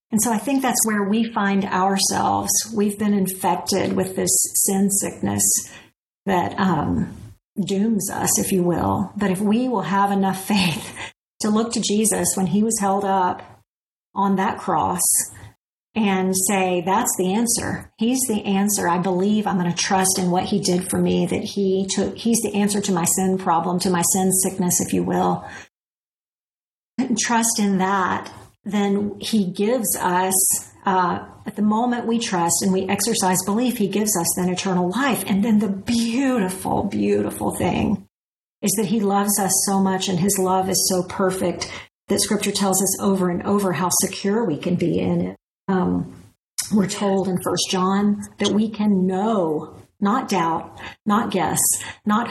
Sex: female